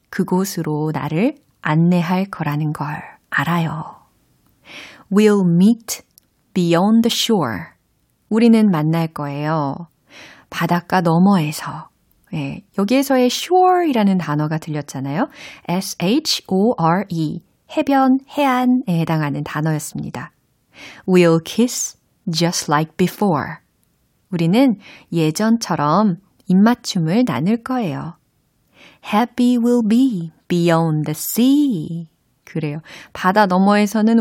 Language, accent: Korean, native